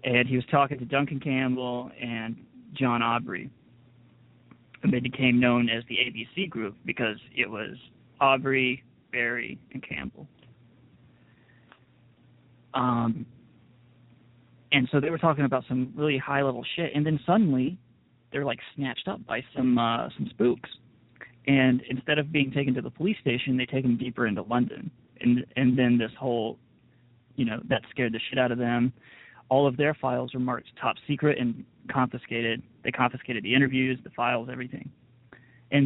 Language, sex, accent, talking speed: English, male, American, 160 wpm